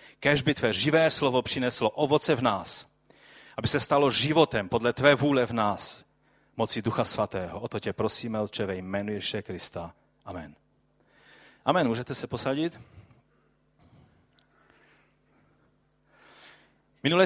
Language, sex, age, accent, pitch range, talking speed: Czech, male, 30-49, native, 115-150 Hz, 115 wpm